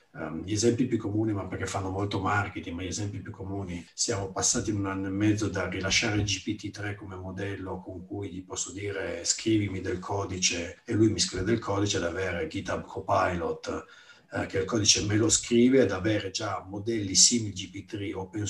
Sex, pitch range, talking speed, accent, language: male, 95-110 Hz, 190 wpm, native, Italian